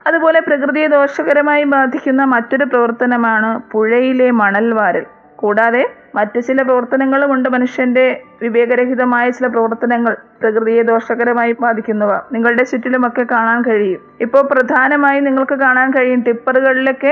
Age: 20-39